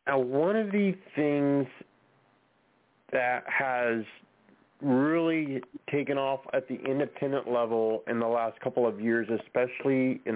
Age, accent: 40-59, American